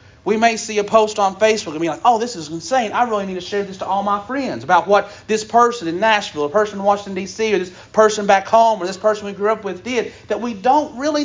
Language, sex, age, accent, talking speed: English, male, 40-59, American, 275 wpm